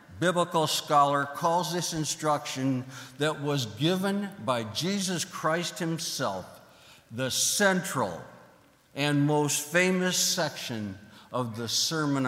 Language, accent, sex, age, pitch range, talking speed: English, American, male, 60-79, 125-170 Hz, 105 wpm